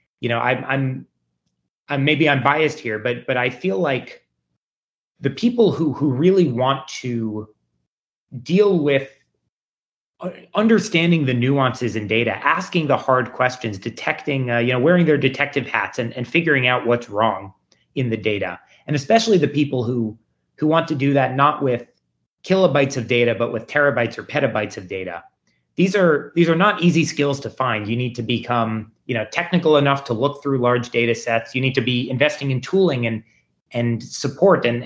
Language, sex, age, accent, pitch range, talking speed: English, male, 30-49, American, 115-145 Hz, 180 wpm